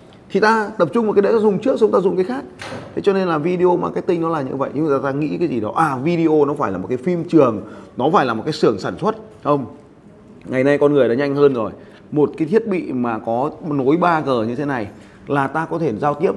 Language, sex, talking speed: Vietnamese, male, 275 wpm